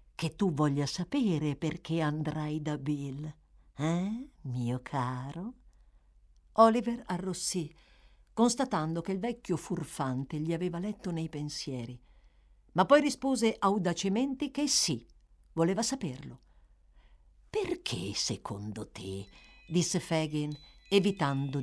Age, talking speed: 50-69, 105 wpm